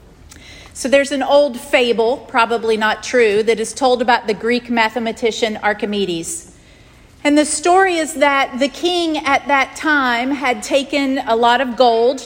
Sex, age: female, 40-59